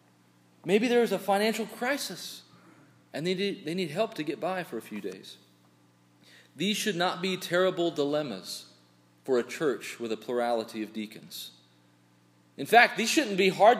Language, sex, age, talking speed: English, male, 40-59, 160 wpm